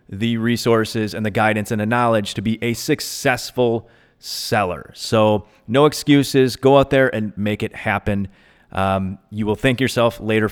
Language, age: English, 30-49